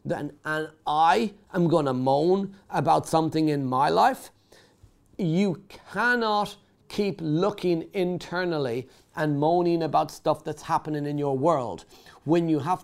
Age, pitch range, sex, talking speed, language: 40-59, 150-195 Hz, male, 130 wpm, English